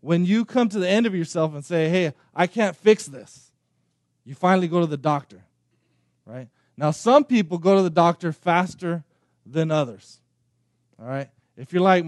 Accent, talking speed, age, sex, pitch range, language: American, 185 wpm, 20-39, male, 140-185 Hz, English